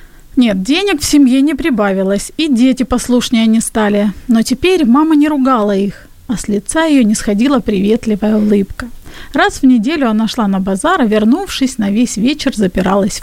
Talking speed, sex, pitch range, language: 170 wpm, female, 215-265 Hz, Ukrainian